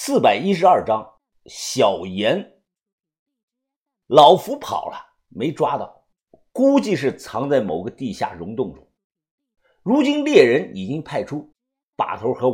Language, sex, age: Chinese, male, 50-69